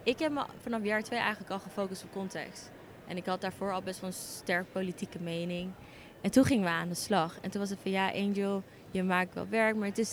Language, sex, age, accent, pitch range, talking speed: Dutch, female, 20-39, Dutch, 190-225 Hz, 255 wpm